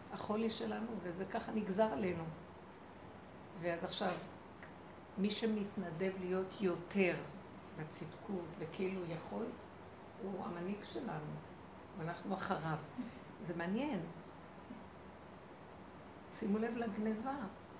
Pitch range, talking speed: 190-255 Hz, 85 wpm